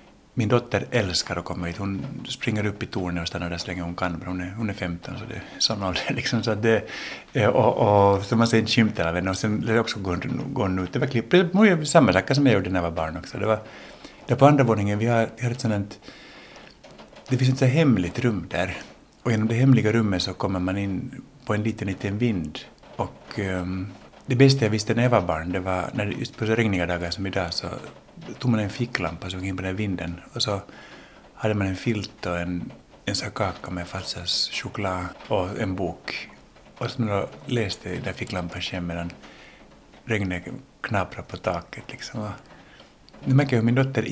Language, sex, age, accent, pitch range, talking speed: Swedish, male, 60-79, Finnish, 90-120 Hz, 220 wpm